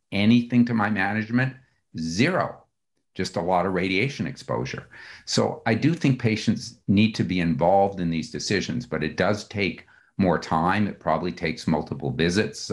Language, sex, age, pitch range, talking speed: English, male, 50-69, 80-110 Hz, 160 wpm